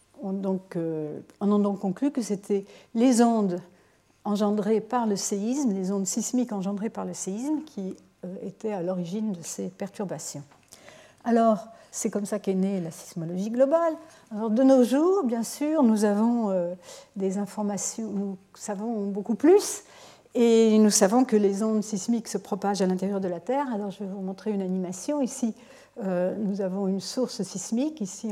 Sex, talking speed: female, 175 wpm